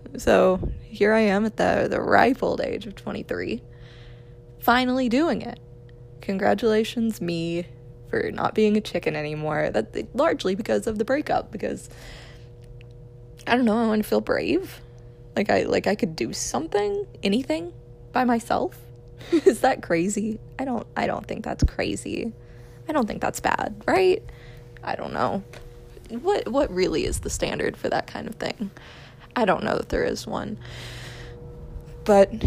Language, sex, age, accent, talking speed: English, female, 20-39, American, 160 wpm